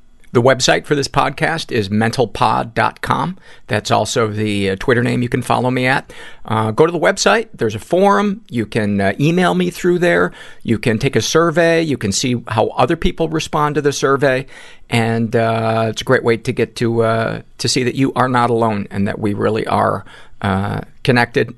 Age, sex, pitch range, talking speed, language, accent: 50-69, male, 105-130 Hz, 200 wpm, English, American